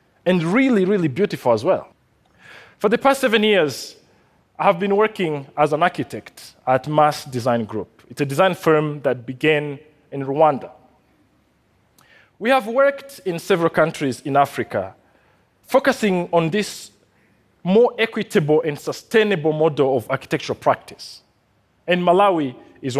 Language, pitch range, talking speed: Portuguese, 125-185 Hz, 135 wpm